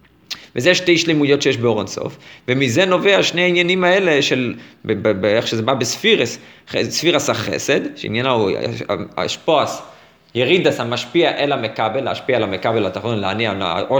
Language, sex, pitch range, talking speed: Hebrew, male, 110-160 Hz, 140 wpm